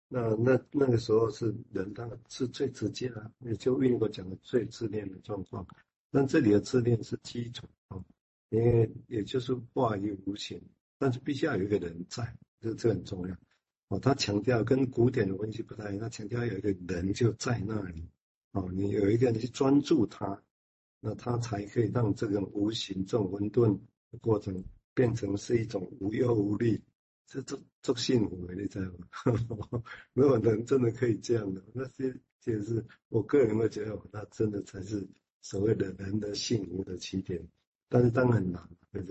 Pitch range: 95-120 Hz